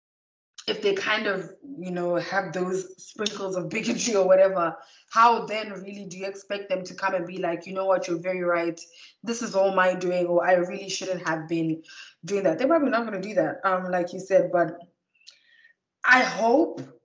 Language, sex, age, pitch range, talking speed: English, female, 20-39, 180-220 Hz, 205 wpm